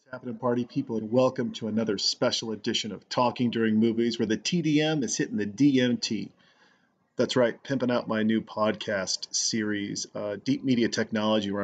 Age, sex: 40-59, male